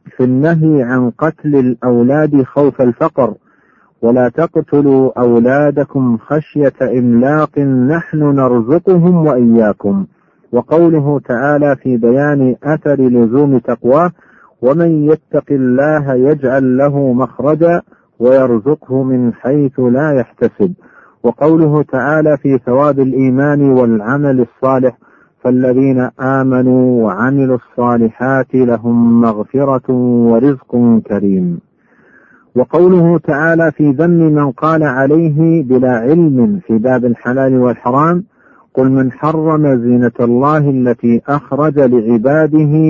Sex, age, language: male, 50-69, Arabic